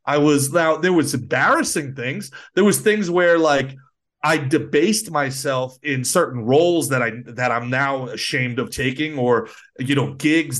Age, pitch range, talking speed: 30-49, 130-175 Hz, 170 wpm